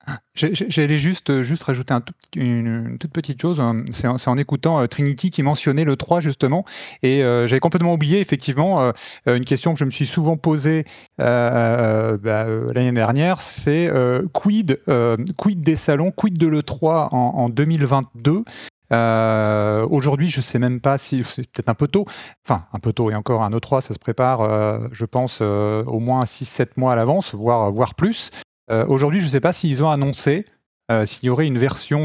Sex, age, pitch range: male, 30-49, 120-150 Hz